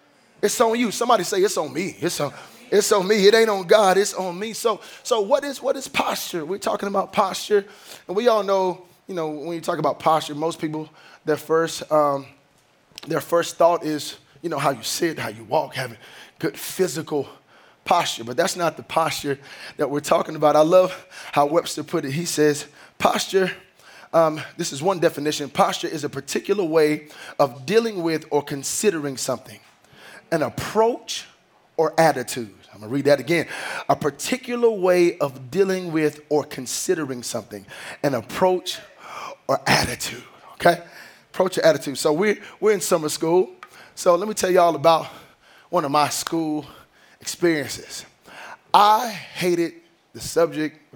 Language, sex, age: English, male, 20-39